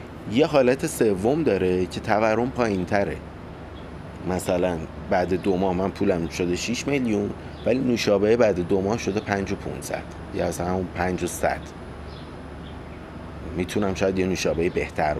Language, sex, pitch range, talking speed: Persian, male, 80-100 Hz, 145 wpm